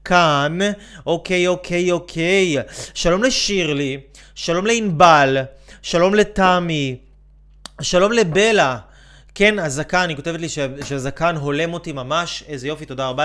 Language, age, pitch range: Hebrew, 20-39, 140-185 Hz